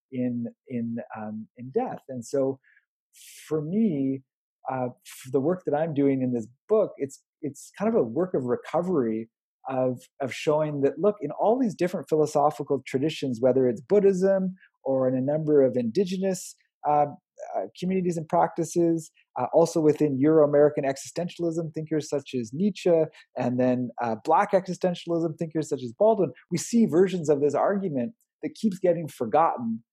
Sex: male